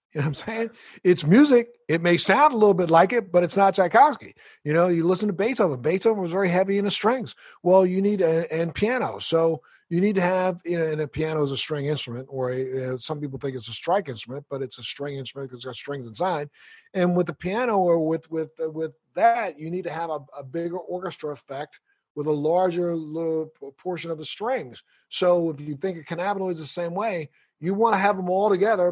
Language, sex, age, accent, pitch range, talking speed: English, male, 50-69, American, 150-190 Hz, 240 wpm